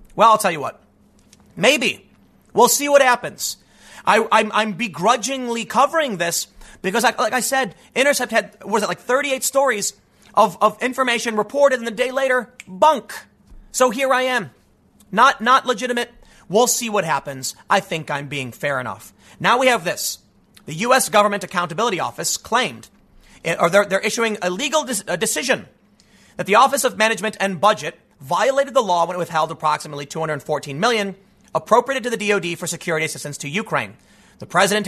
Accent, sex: American, male